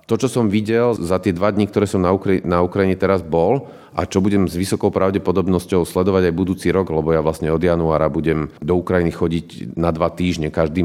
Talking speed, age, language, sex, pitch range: 215 wpm, 40-59, Slovak, male, 85-100 Hz